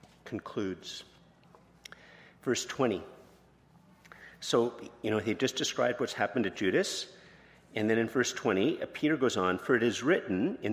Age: 50-69